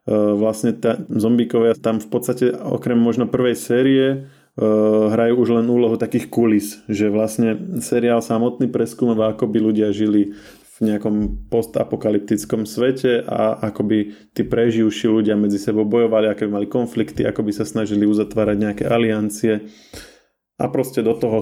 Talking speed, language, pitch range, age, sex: 150 wpm, Slovak, 105-115 Hz, 20-39, male